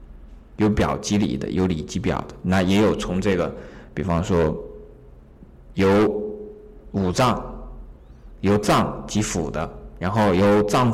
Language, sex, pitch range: Chinese, male, 85-120 Hz